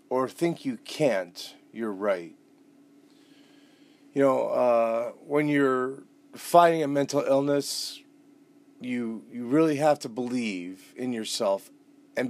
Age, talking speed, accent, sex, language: 40-59, 115 wpm, American, male, English